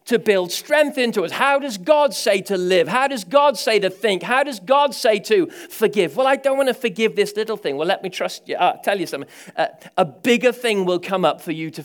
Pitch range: 190-285 Hz